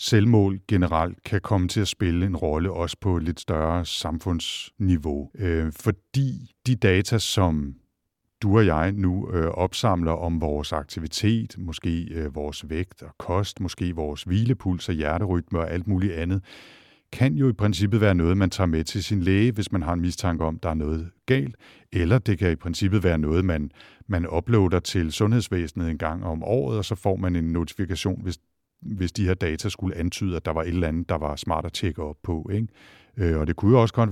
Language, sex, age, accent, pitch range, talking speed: Danish, male, 60-79, native, 80-100 Hz, 190 wpm